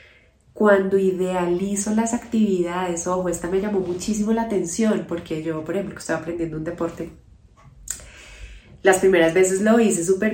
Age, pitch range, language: 30-49, 175-210 Hz, Spanish